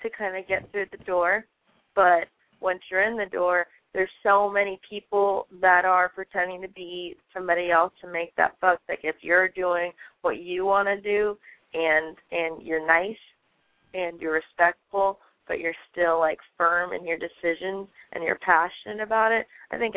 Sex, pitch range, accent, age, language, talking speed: female, 175-200 Hz, American, 20-39, English, 175 wpm